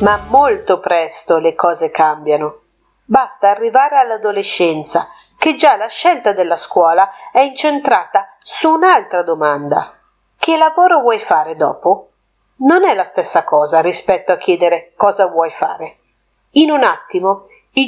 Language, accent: Italian, native